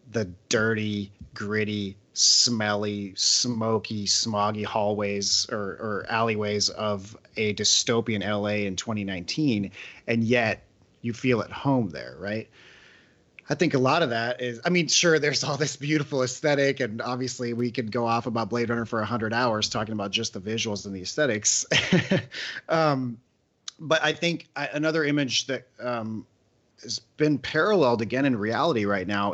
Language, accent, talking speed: English, American, 155 wpm